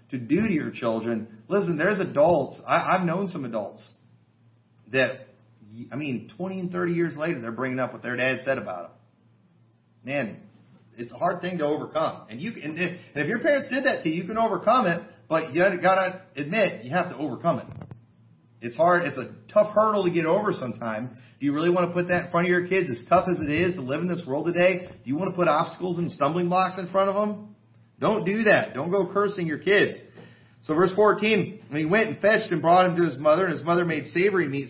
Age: 40-59